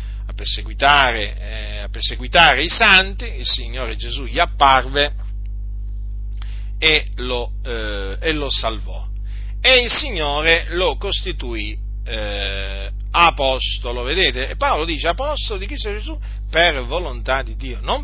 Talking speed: 110 wpm